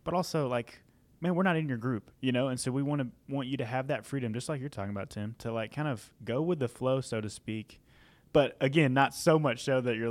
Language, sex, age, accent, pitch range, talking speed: English, male, 20-39, American, 115-140 Hz, 280 wpm